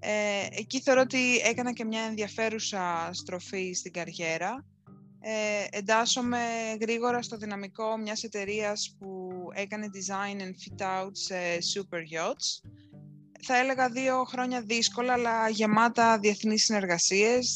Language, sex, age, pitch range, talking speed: Greek, female, 20-39, 185-225 Hz, 120 wpm